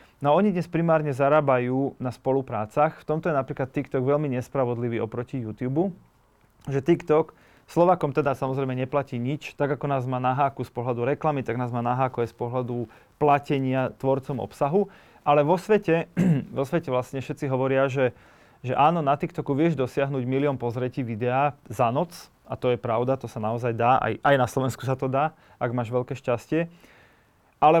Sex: male